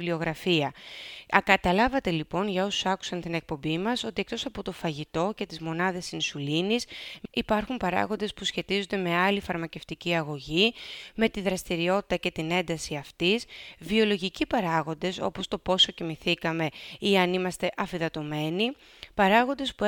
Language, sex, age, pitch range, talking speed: Greek, female, 30-49, 165-215 Hz, 135 wpm